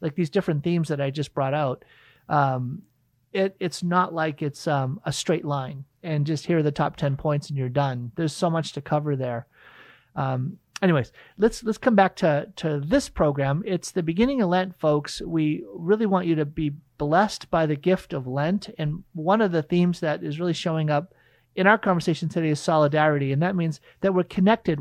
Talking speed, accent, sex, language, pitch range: 210 wpm, American, male, English, 145-185 Hz